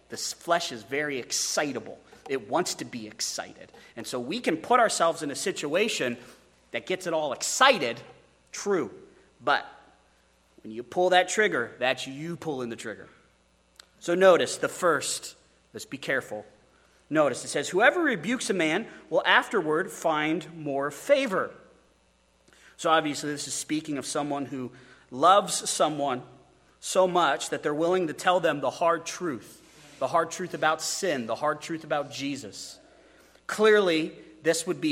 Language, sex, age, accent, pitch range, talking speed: English, male, 30-49, American, 120-160 Hz, 155 wpm